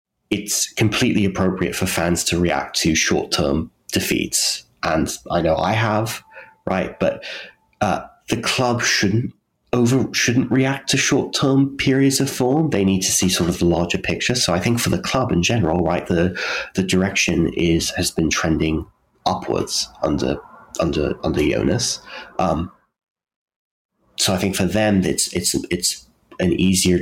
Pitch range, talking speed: 85-110 Hz, 160 wpm